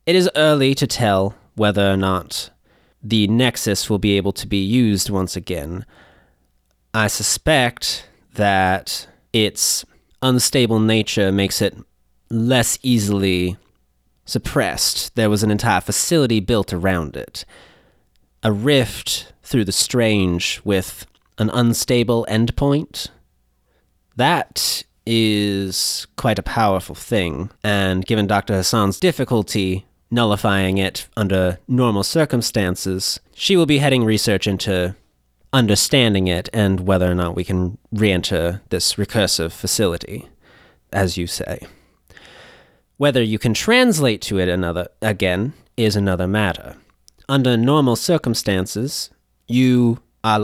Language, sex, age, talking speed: English, male, 30-49, 120 wpm